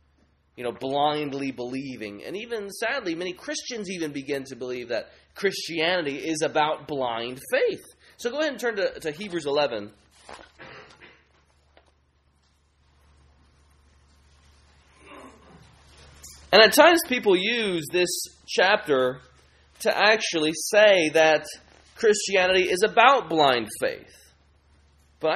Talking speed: 105 wpm